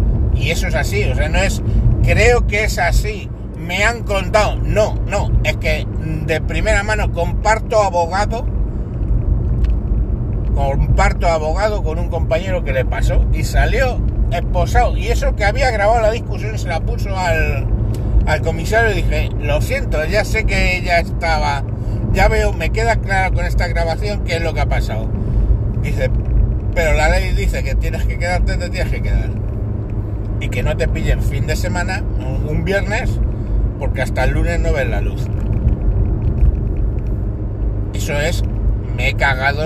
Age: 60-79